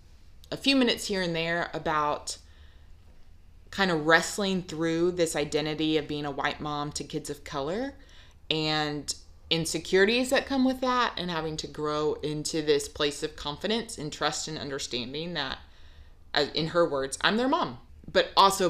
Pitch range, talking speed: 145-175 Hz, 160 wpm